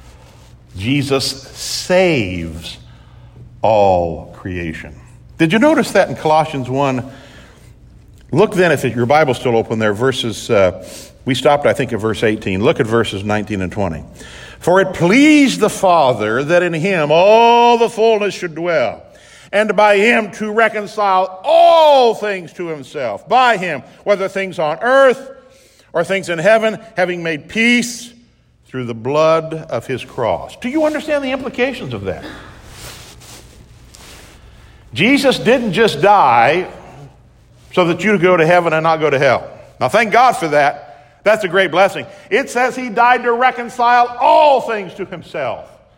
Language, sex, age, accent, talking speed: English, male, 60-79, American, 150 wpm